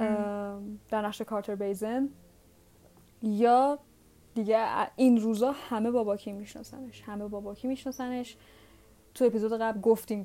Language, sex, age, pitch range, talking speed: Persian, female, 10-29, 200-235 Hz, 125 wpm